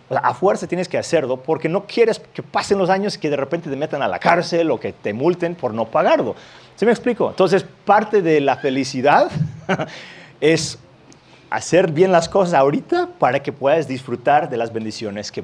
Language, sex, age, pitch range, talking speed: Spanish, male, 30-49, 125-165 Hz, 205 wpm